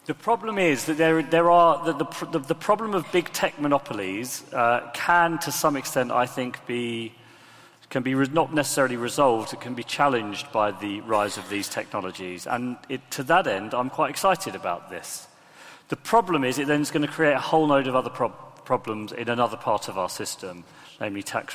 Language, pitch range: English, 120-170 Hz